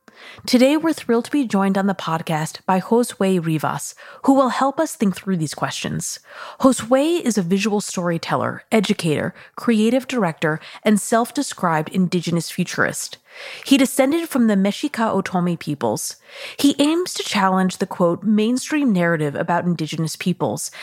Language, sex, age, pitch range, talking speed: English, female, 30-49, 170-235 Hz, 145 wpm